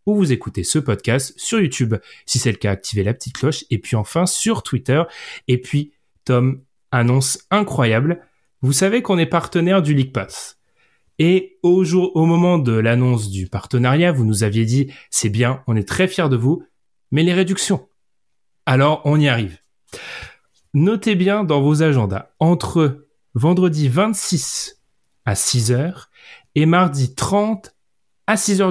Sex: male